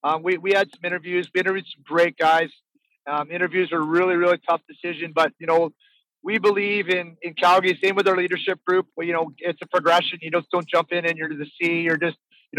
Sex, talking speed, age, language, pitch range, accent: male, 240 wpm, 30-49, English, 165-180 Hz, American